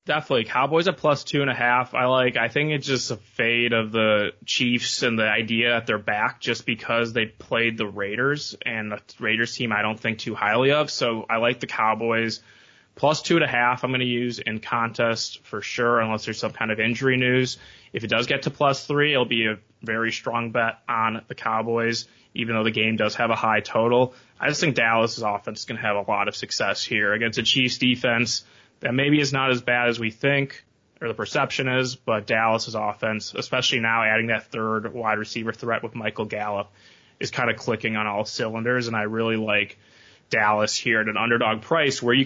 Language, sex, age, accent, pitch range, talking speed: English, male, 20-39, American, 110-125 Hz, 220 wpm